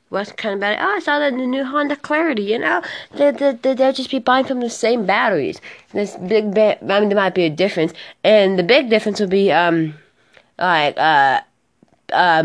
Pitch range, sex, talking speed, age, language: 170-200 Hz, female, 210 wpm, 20-39, English